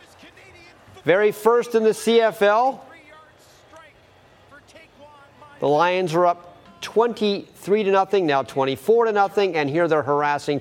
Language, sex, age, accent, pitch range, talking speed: English, male, 40-59, American, 145-200 Hz, 115 wpm